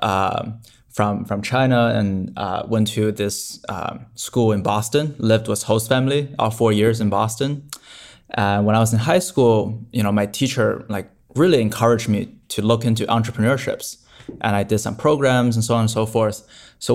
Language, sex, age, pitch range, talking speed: English, male, 20-39, 105-120 Hz, 190 wpm